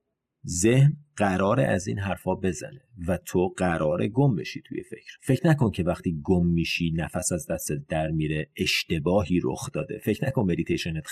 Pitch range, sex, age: 100-145 Hz, male, 40-59